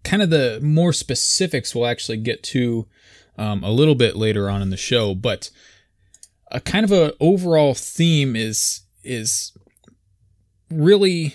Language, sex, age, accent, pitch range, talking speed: English, male, 20-39, American, 100-135 Hz, 150 wpm